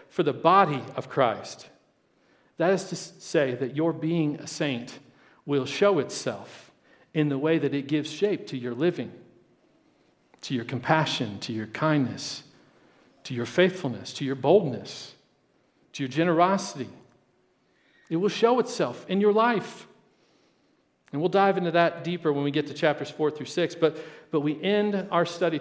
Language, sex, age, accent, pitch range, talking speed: English, male, 50-69, American, 135-165 Hz, 160 wpm